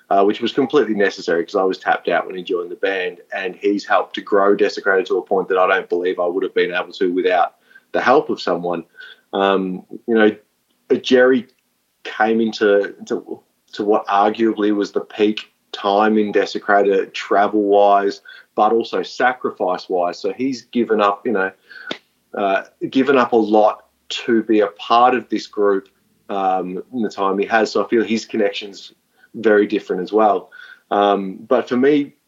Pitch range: 100-130 Hz